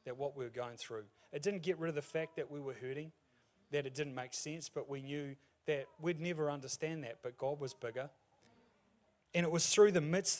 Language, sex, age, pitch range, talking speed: English, male, 30-49, 130-165 Hz, 230 wpm